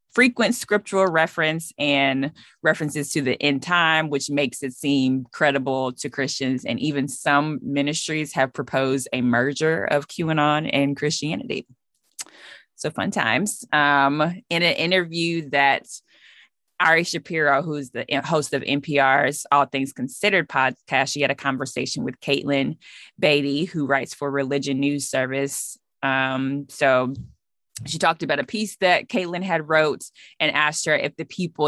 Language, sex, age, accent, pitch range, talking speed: English, female, 20-39, American, 135-155 Hz, 145 wpm